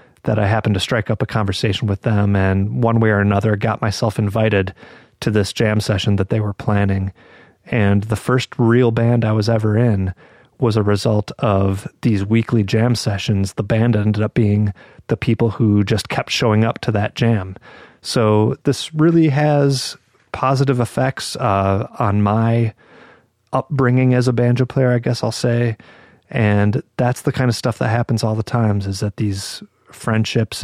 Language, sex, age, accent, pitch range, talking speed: English, male, 30-49, American, 105-120 Hz, 180 wpm